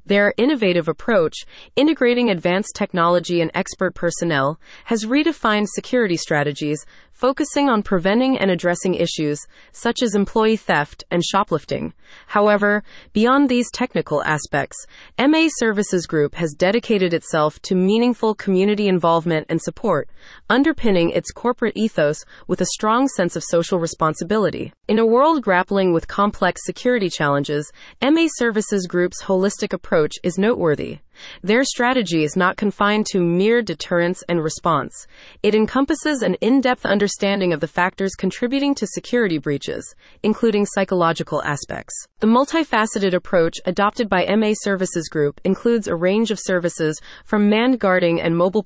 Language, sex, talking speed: English, female, 135 wpm